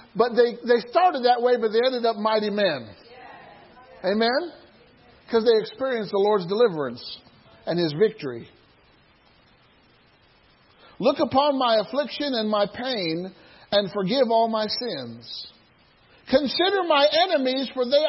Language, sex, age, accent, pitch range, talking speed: English, male, 50-69, American, 195-265 Hz, 130 wpm